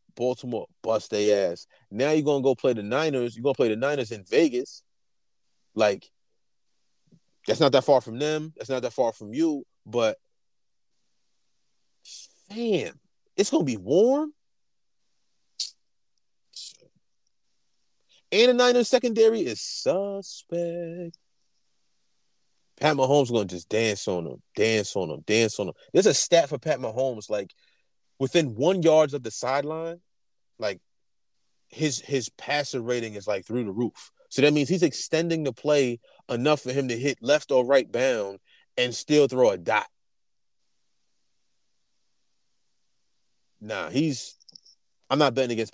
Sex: male